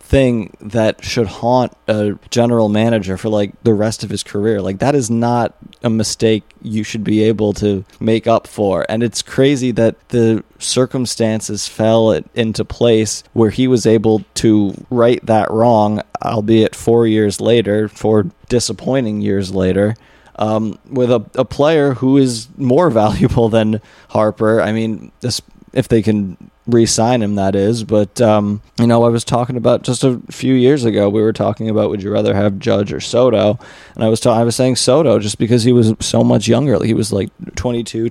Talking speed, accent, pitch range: 185 wpm, American, 105-120 Hz